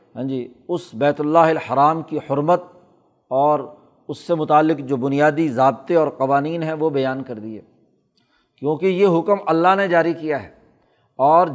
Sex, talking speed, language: male, 160 wpm, Urdu